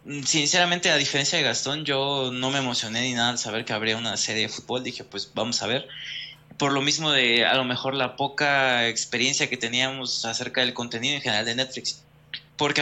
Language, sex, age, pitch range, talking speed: Spanish, male, 20-39, 120-145 Hz, 205 wpm